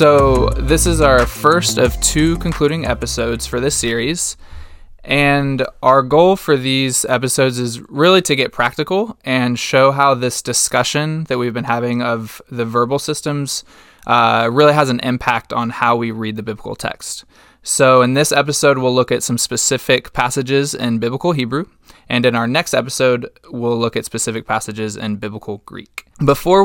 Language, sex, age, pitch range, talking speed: English, male, 20-39, 115-140 Hz, 170 wpm